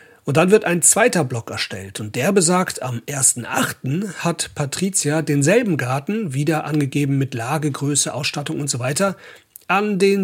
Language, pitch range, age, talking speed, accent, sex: German, 130-170 Hz, 40-59, 160 wpm, German, male